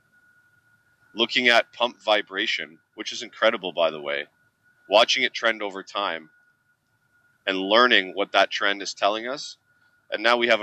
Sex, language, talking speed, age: male, English, 150 wpm, 30-49